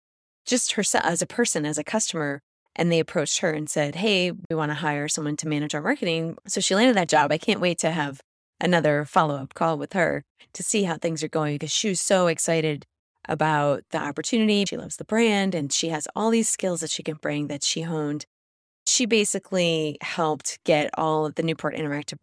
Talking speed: 215 wpm